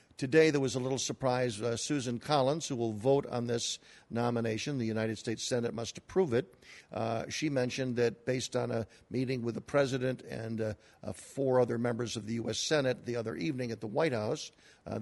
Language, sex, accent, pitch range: English, male, American, 115-135 Hz